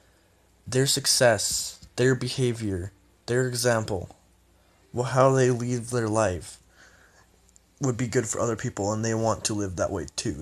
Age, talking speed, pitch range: 20-39, 150 wpm, 95-120 Hz